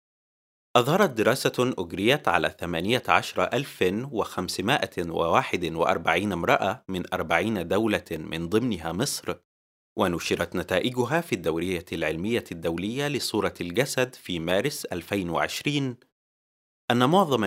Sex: male